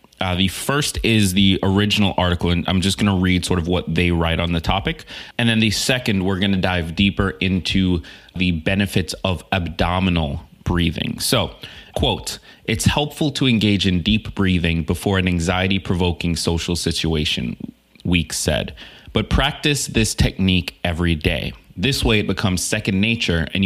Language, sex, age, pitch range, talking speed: English, male, 30-49, 90-110 Hz, 165 wpm